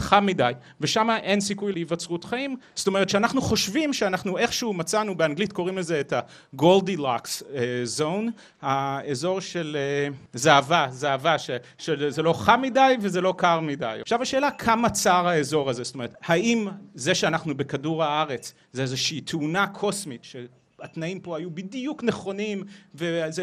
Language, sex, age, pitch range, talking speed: Hebrew, male, 30-49, 155-210 Hz, 145 wpm